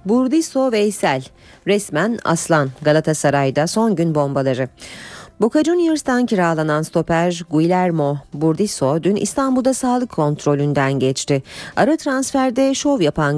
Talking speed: 105 wpm